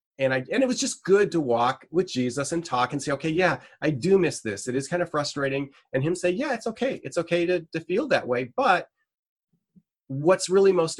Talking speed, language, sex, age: 235 wpm, English, male, 30-49